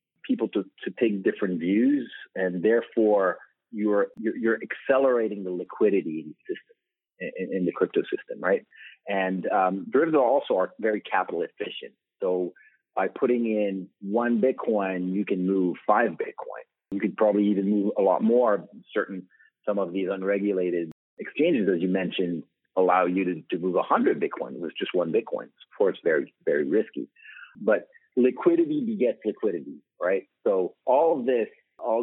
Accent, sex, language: American, male, English